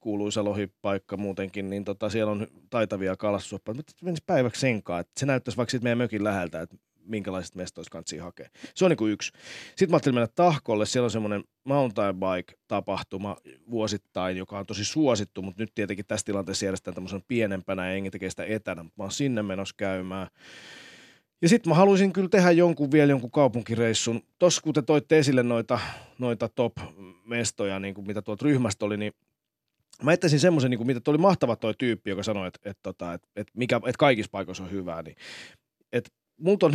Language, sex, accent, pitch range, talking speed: Finnish, male, native, 100-135 Hz, 185 wpm